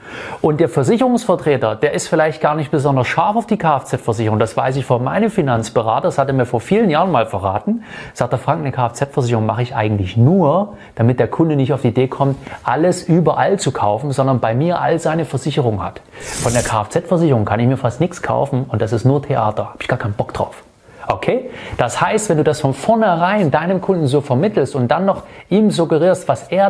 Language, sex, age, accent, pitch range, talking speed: German, male, 30-49, German, 130-180 Hz, 215 wpm